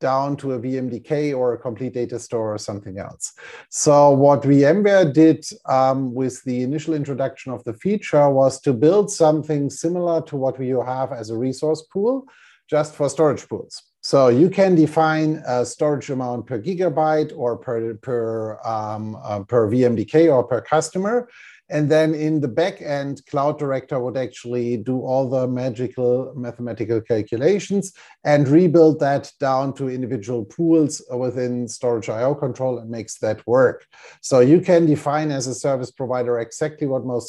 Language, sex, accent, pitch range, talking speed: English, male, German, 120-150 Hz, 165 wpm